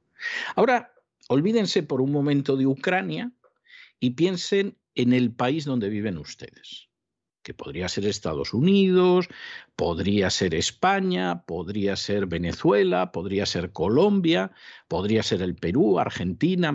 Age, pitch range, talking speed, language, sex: 50-69, 100-155 Hz, 120 wpm, Spanish, male